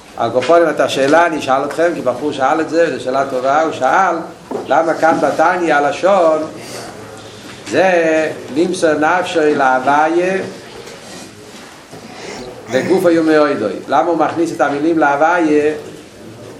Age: 50-69